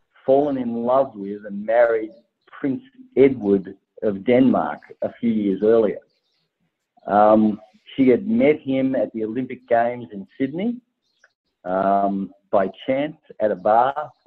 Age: 50-69